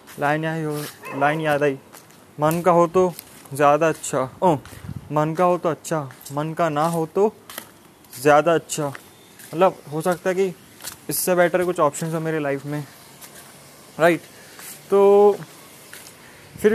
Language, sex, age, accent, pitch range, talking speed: Hindi, male, 20-39, native, 145-180 Hz, 150 wpm